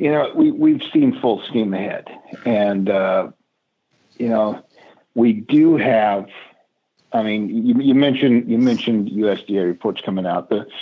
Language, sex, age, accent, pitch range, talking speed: English, male, 50-69, American, 110-140 Hz, 150 wpm